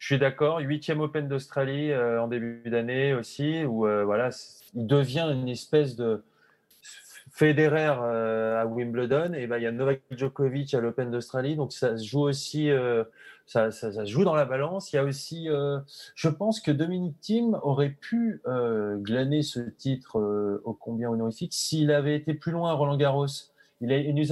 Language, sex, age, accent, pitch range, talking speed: French, male, 30-49, French, 115-150 Hz, 190 wpm